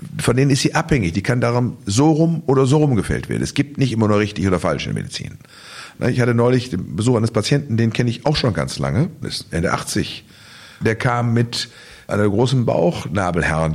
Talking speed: 220 wpm